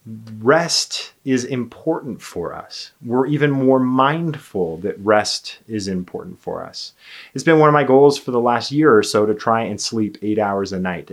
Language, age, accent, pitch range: English, 30-49, American, 100-130 Hz